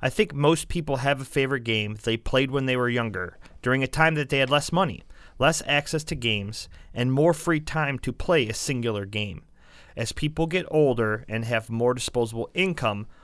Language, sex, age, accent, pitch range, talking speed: English, male, 30-49, American, 115-150 Hz, 200 wpm